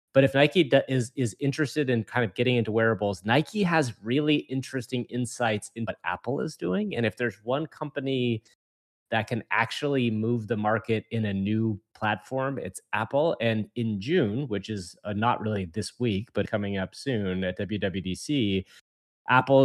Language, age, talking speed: English, 30-49, 170 wpm